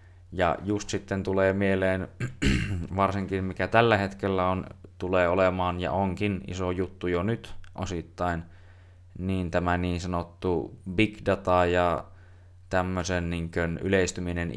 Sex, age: male, 20-39